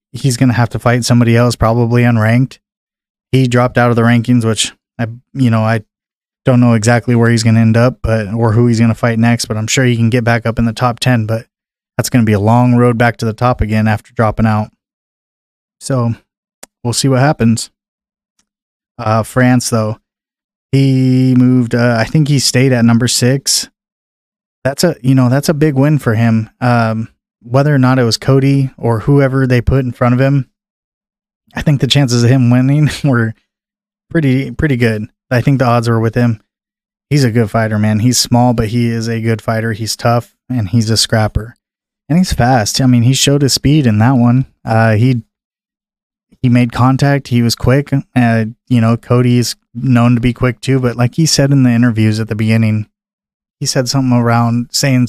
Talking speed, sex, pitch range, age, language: 210 wpm, male, 115-135 Hz, 20-39, English